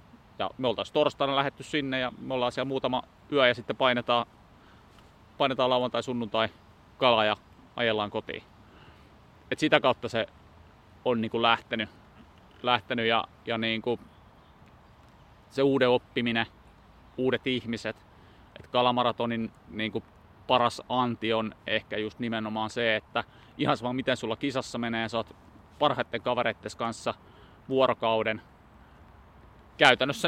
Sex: male